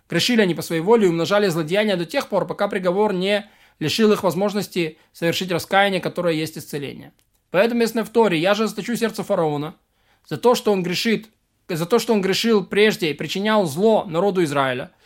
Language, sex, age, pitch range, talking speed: Russian, male, 20-39, 180-225 Hz, 190 wpm